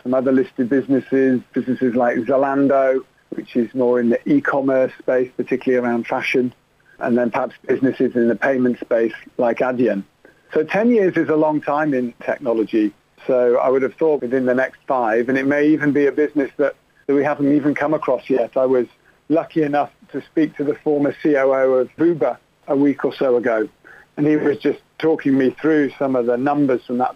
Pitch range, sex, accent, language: 125-150 Hz, male, British, English